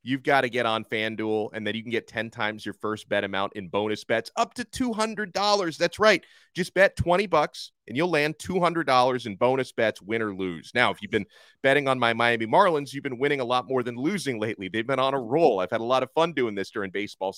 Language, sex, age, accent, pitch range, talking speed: English, male, 30-49, American, 110-160 Hz, 250 wpm